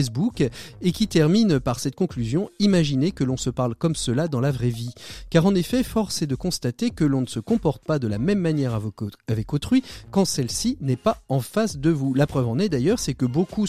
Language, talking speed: French, 230 wpm